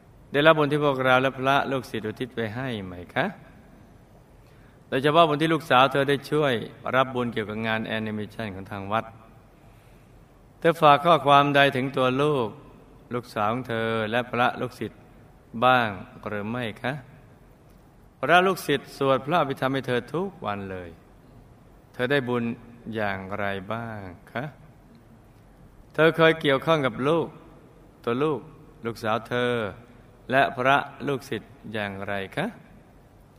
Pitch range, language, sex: 110-145 Hz, Thai, male